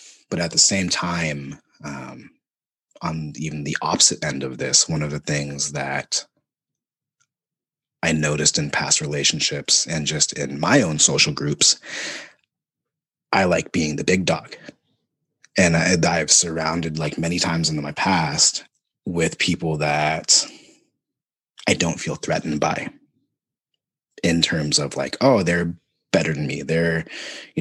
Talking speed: 140 wpm